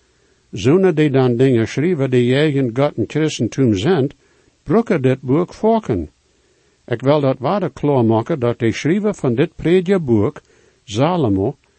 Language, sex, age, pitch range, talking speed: English, male, 60-79, 120-175 Hz, 155 wpm